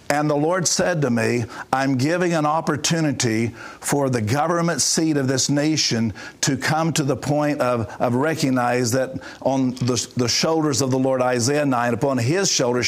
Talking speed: 175 wpm